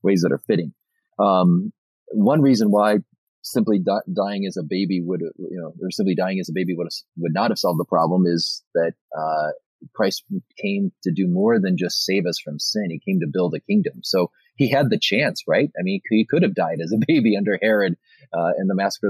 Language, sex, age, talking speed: English, male, 30-49, 225 wpm